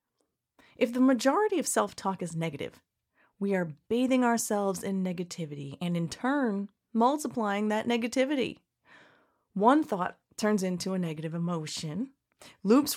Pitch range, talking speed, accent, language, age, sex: 180-235 Hz, 125 wpm, American, English, 30-49, female